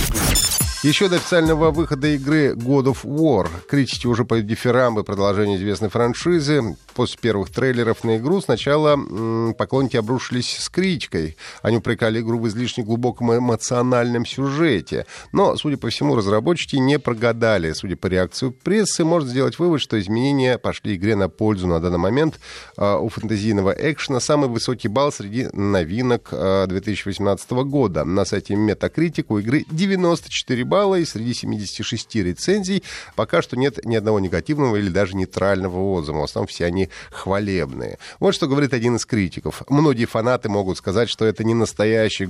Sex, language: male, Russian